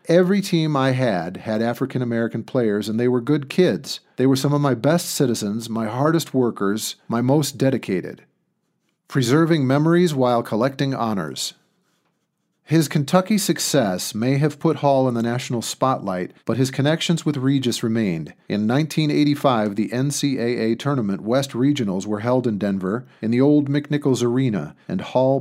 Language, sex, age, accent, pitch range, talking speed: English, male, 50-69, American, 110-145 Hz, 155 wpm